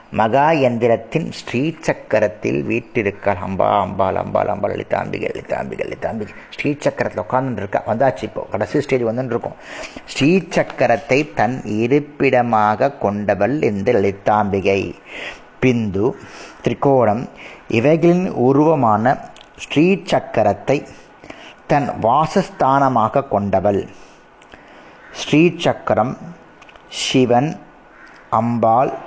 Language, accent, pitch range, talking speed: Tamil, native, 110-155 Hz, 60 wpm